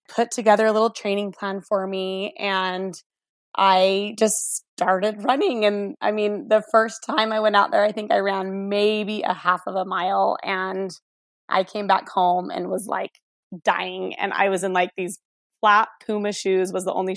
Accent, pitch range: American, 190-230 Hz